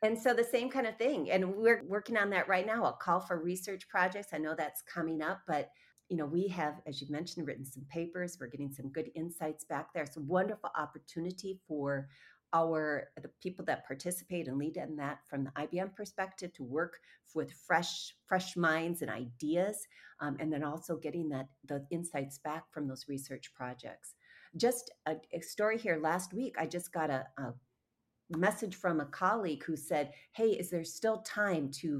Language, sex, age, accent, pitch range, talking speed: English, female, 40-59, American, 150-185 Hz, 195 wpm